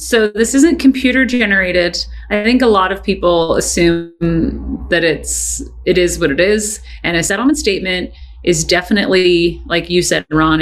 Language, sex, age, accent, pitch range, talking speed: English, female, 30-49, American, 175-235 Hz, 165 wpm